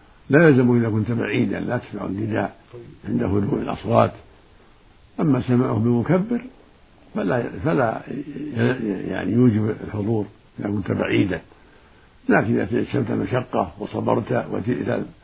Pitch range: 95-140 Hz